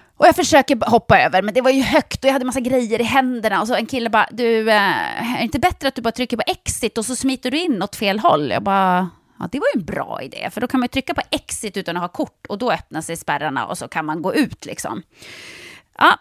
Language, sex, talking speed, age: Swedish, female, 280 wpm, 30-49